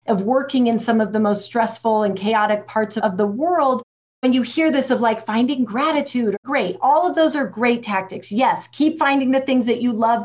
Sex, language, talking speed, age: female, English, 215 wpm, 40-59